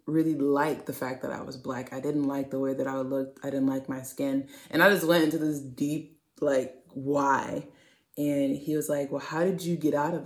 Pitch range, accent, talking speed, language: 140-170 Hz, American, 240 wpm, English